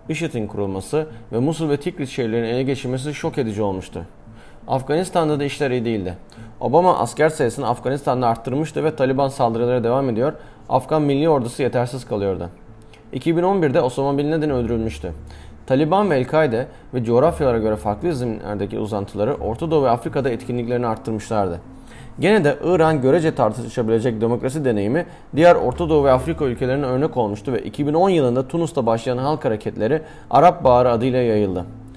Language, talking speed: Turkish, 145 wpm